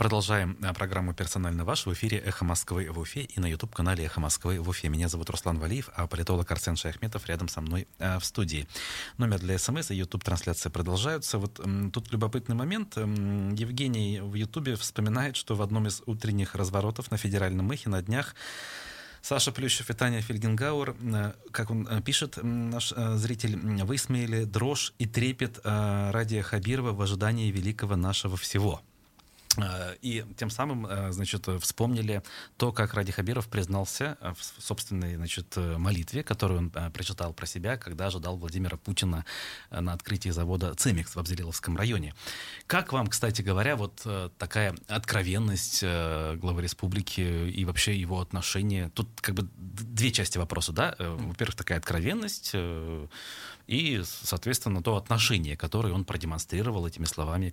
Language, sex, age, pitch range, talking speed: Russian, male, 30-49, 90-115 Hz, 145 wpm